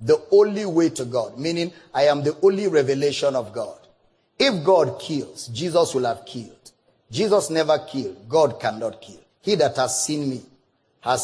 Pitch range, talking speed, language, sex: 135-175 Hz, 170 wpm, English, male